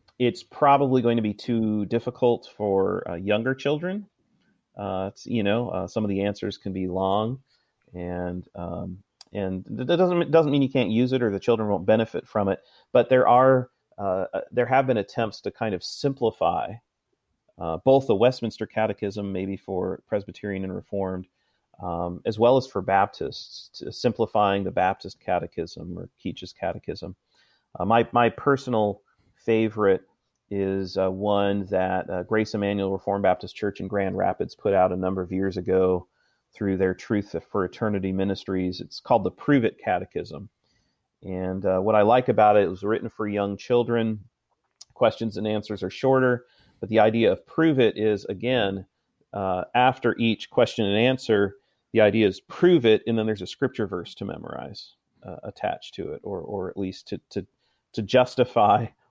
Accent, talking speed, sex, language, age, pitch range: American, 175 wpm, male, English, 40-59, 95-120 Hz